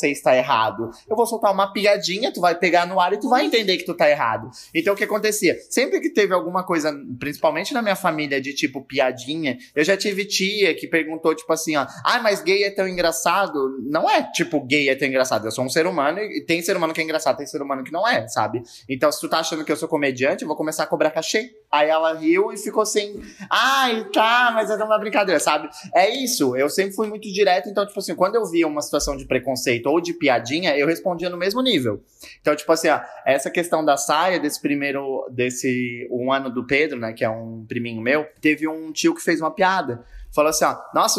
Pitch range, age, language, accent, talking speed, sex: 150-205 Hz, 20-39, Portuguese, Brazilian, 235 wpm, male